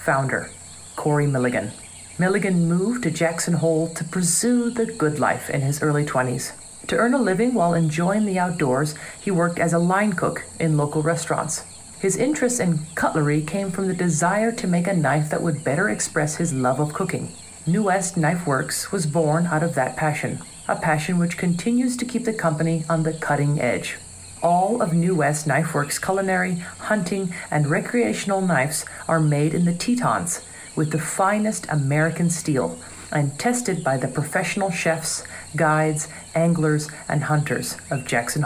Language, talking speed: English, 170 wpm